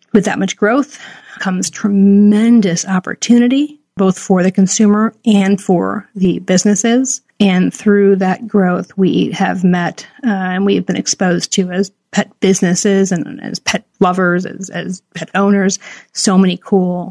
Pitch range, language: 190-220 Hz, English